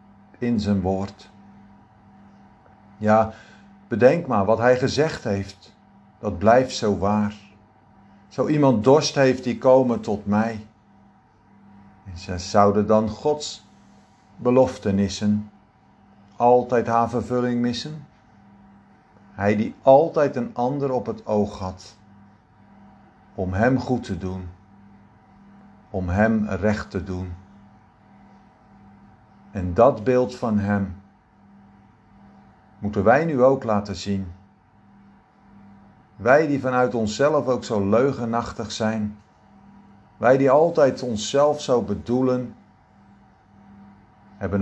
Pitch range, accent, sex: 100-120 Hz, Dutch, male